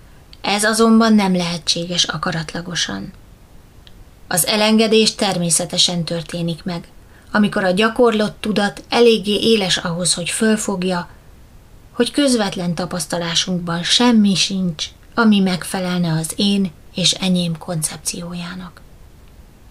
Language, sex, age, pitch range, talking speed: Hungarian, female, 20-39, 175-215 Hz, 95 wpm